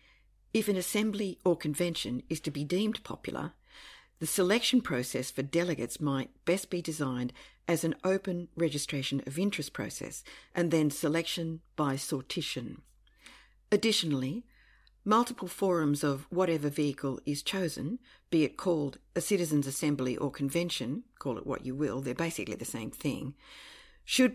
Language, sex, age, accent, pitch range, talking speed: English, female, 50-69, Australian, 140-185 Hz, 145 wpm